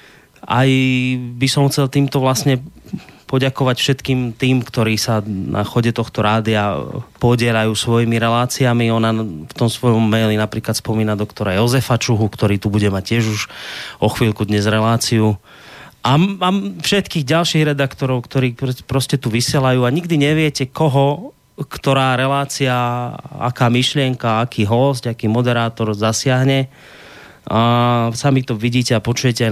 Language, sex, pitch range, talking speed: Slovak, male, 110-130 Hz, 135 wpm